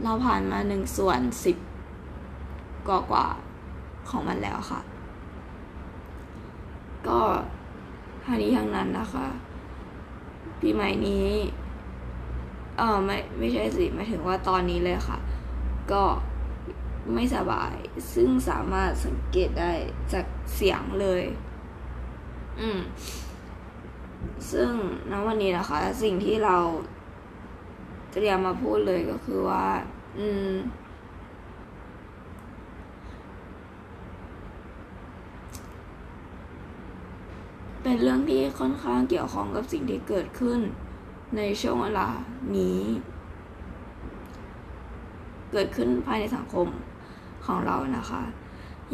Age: 20-39